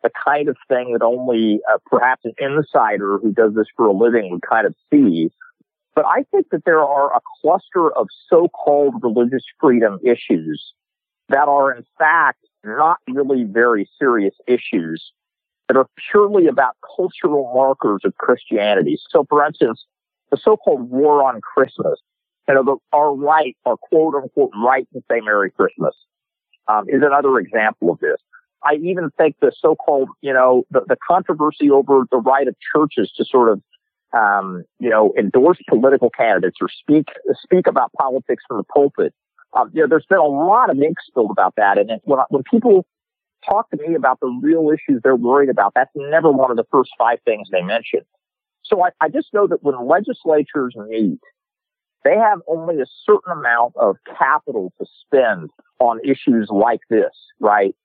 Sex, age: male, 50-69